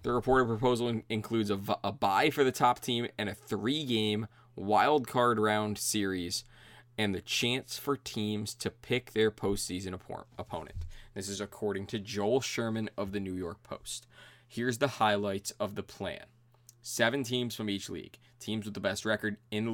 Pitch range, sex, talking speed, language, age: 105-120 Hz, male, 180 wpm, English, 20-39